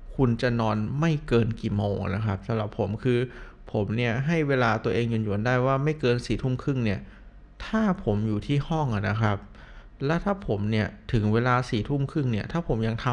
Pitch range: 110-140 Hz